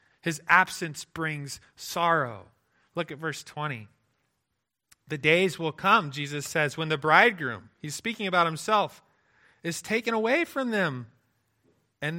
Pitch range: 140-200 Hz